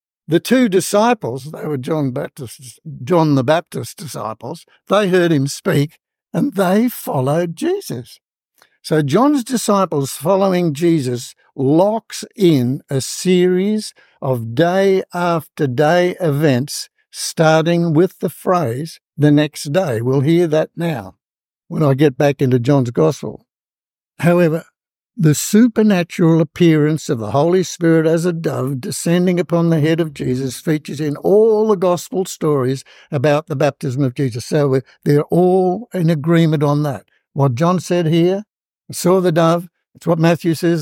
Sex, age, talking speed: male, 60-79, 145 wpm